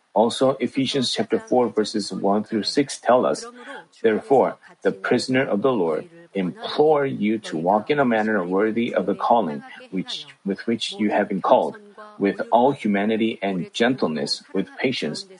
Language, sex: Korean, male